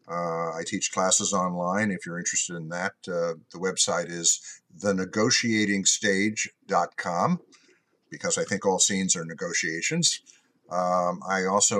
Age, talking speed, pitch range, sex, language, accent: 50-69, 125 wpm, 95-135 Hz, male, English, American